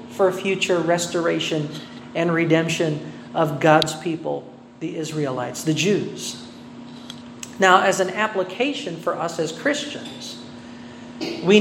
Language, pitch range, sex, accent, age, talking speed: Filipino, 160-210 Hz, male, American, 50-69, 115 wpm